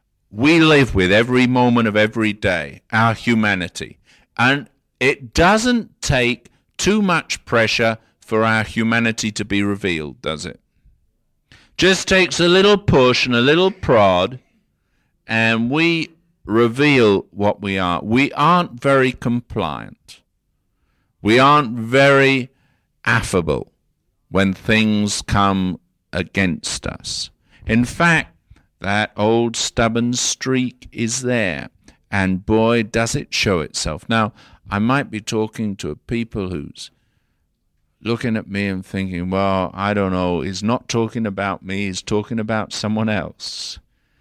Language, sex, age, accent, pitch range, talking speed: English, male, 50-69, British, 100-125 Hz, 130 wpm